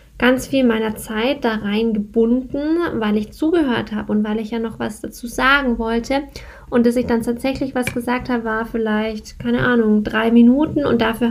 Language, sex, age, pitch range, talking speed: German, female, 10-29, 225-280 Hz, 185 wpm